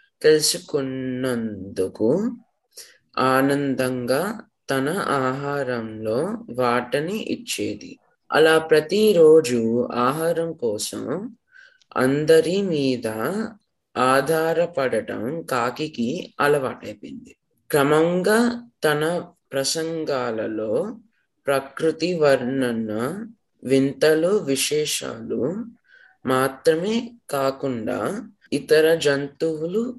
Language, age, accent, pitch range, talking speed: Telugu, 20-39, native, 135-205 Hz, 50 wpm